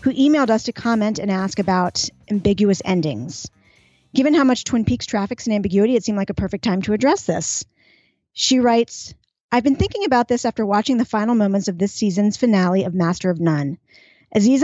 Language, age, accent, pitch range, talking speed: English, 40-59, American, 190-235 Hz, 195 wpm